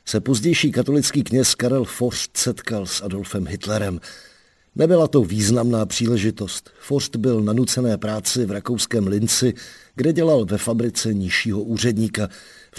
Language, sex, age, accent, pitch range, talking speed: Czech, male, 50-69, native, 105-125 Hz, 130 wpm